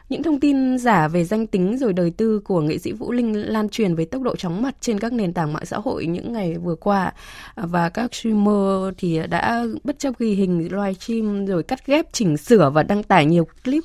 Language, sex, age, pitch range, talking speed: Vietnamese, female, 20-39, 180-245 Hz, 230 wpm